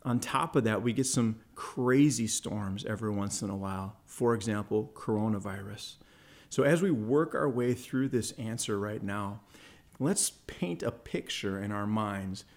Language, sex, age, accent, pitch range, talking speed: English, male, 40-59, American, 105-140 Hz, 165 wpm